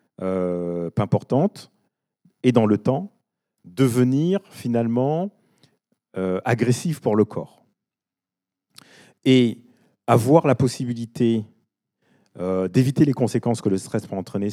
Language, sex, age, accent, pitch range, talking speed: French, male, 40-59, French, 95-130 Hz, 110 wpm